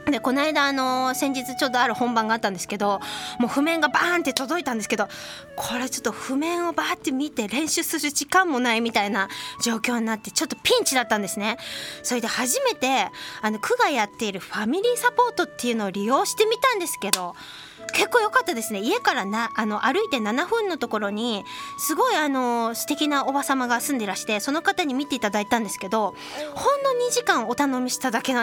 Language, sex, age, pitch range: Japanese, female, 20-39, 220-335 Hz